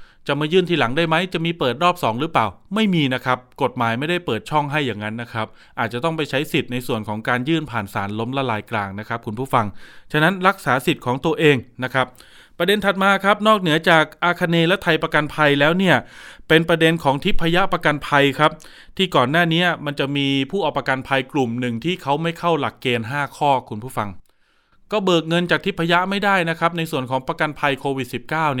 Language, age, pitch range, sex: Thai, 20-39, 130-170 Hz, male